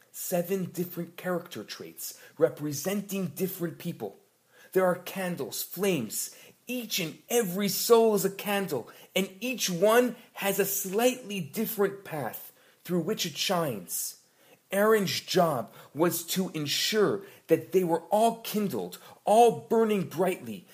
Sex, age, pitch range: male, 40-59, 165-210 Hz